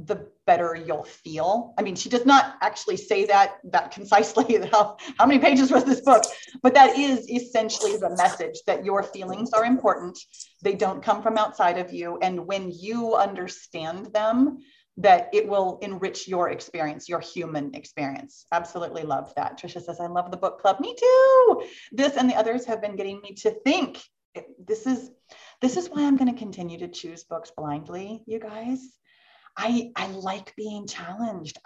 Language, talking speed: English, 180 wpm